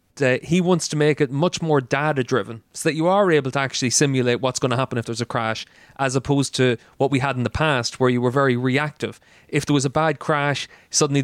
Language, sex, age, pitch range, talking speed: English, male, 30-49, 125-150 Hz, 245 wpm